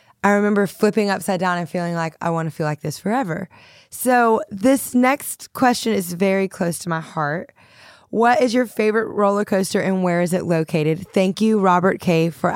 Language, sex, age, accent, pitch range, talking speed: English, female, 20-39, American, 160-205 Hz, 195 wpm